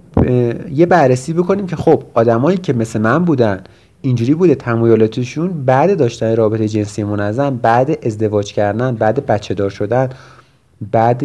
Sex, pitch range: male, 100-130 Hz